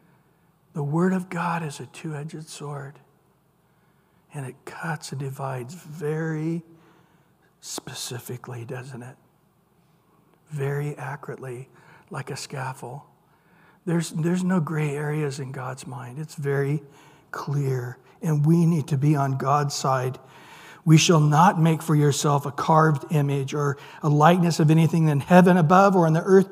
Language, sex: English, male